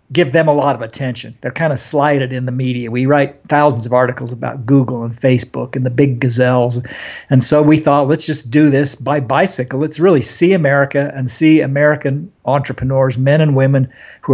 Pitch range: 130-145 Hz